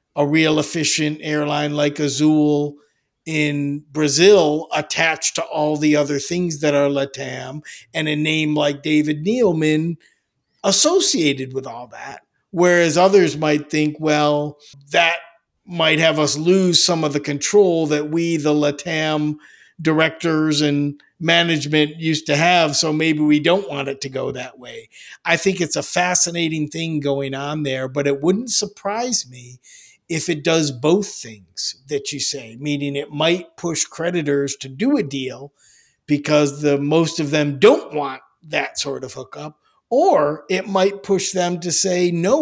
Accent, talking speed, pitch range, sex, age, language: American, 155 wpm, 145-175 Hz, male, 50-69, English